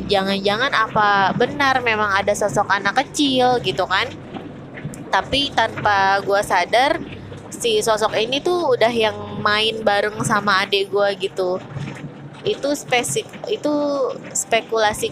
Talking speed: 120 wpm